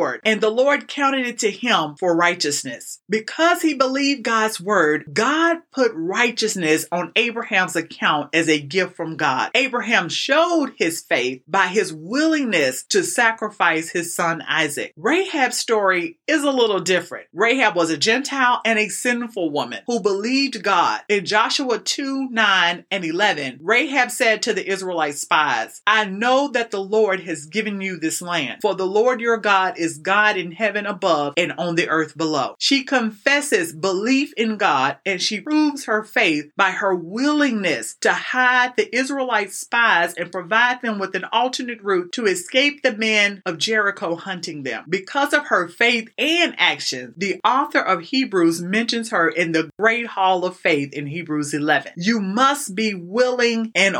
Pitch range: 175-245 Hz